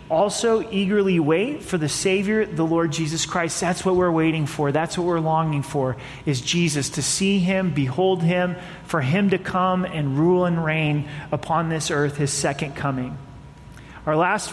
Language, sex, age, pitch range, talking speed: English, male, 30-49, 155-200 Hz, 180 wpm